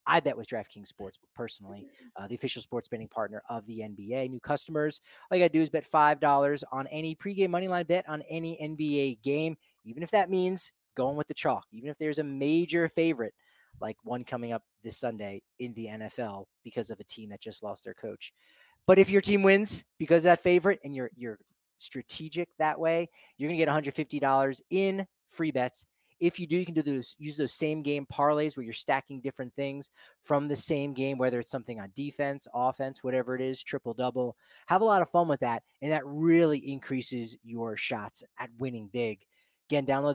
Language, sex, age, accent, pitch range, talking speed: English, male, 30-49, American, 125-160 Hz, 210 wpm